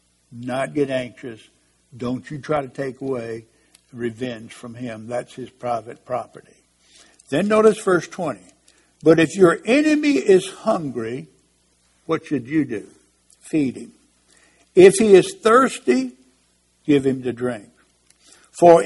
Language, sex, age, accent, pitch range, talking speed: English, male, 60-79, American, 115-150 Hz, 130 wpm